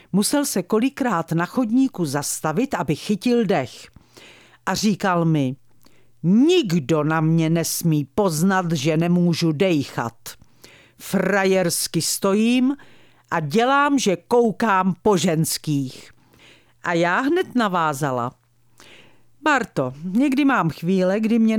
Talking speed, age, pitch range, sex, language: 105 wpm, 50-69, 160-215 Hz, female, Czech